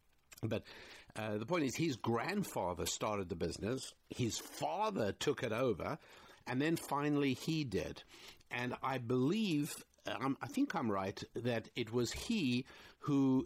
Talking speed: 145 wpm